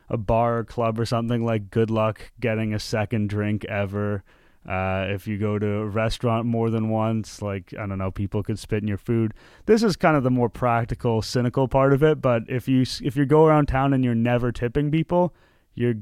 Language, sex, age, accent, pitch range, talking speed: English, male, 30-49, American, 105-130 Hz, 215 wpm